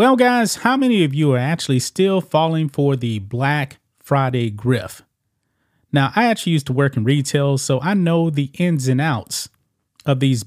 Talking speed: 185 wpm